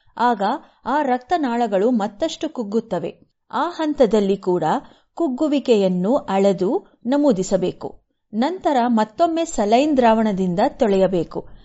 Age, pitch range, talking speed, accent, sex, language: 30-49, 205-280 Hz, 80 wpm, Indian, female, English